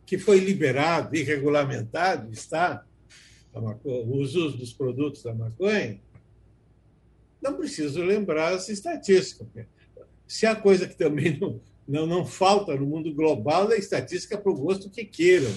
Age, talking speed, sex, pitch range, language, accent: 60-79, 140 wpm, male, 135-195 Hz, Portuguese, Brazilian